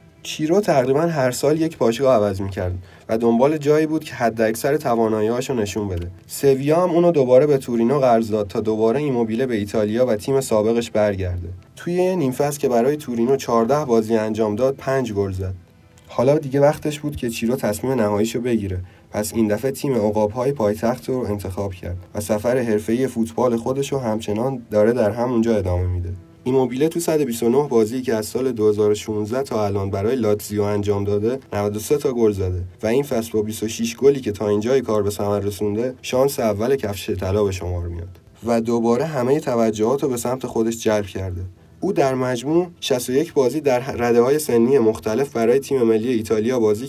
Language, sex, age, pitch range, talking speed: Persian, male, 30-49, 105-130 Hz, 180 wpm